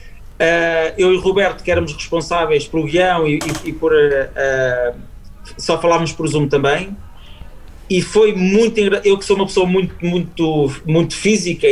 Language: Portuguese